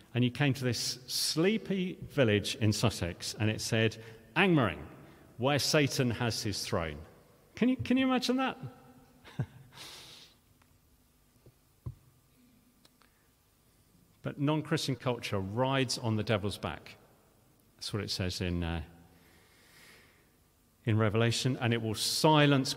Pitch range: 105-130 Hz